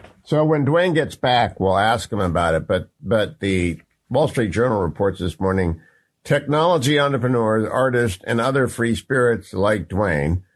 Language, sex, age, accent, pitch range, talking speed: English, male, 50-69, American, 100-130 Hz, 160 wpm